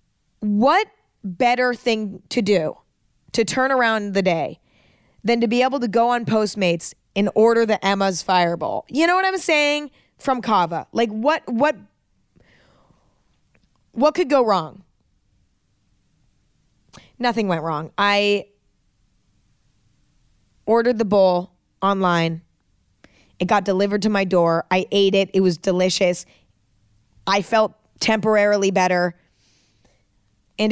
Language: English